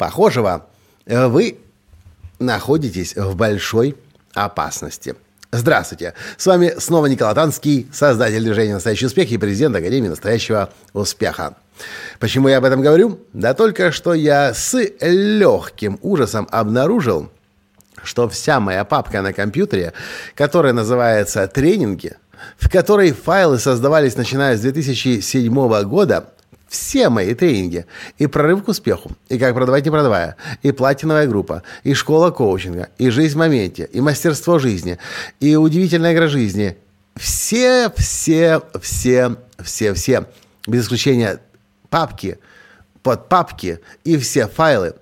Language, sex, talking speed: Russian, male, 125 wpm